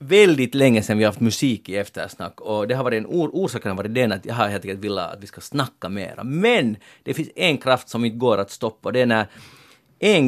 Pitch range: 105-135 Hz